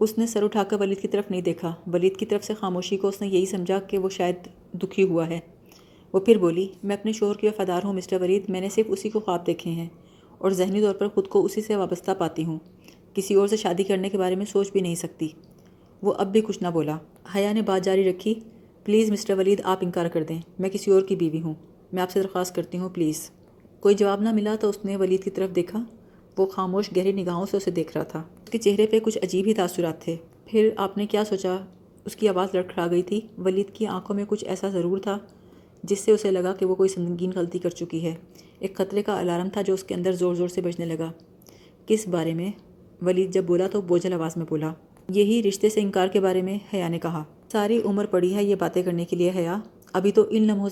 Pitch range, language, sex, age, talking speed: 180-205 Hz, Urdu, female, 30-49, 245 wpm